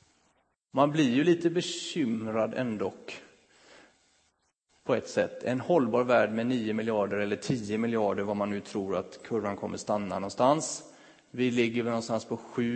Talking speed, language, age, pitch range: 150 wpm, Swedish, 30-49, 110-140 Hz